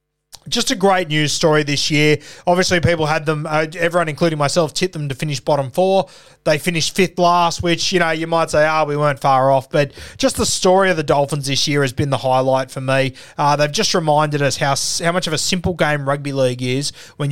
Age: 20-39